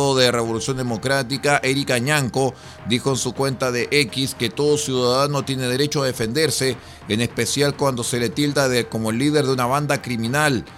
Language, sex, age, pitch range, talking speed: Spanish, male, 40-59, 115-140 Hz, 175 wpm